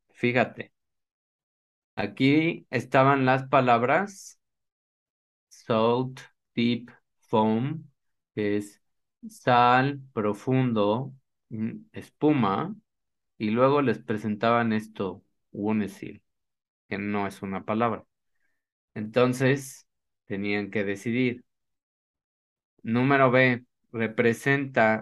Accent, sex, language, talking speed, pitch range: Mexican, male, Spanish, 75 wpm, 105-130 Hz